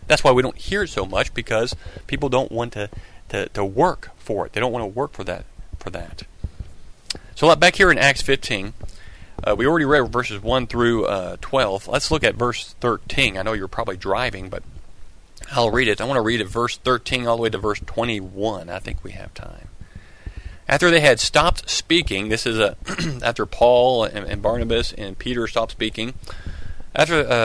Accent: American